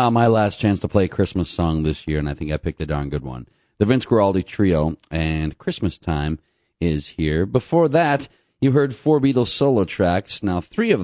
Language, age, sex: English, 40-59, male